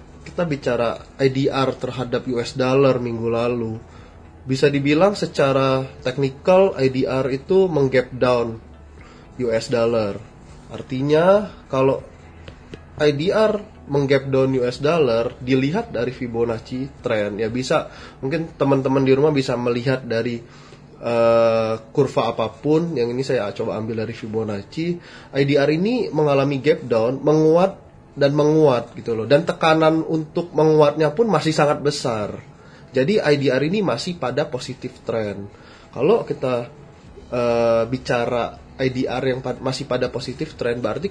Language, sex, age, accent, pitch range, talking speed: Indonesian, male, 20-39, native, 115-145 Hz, 125 wpm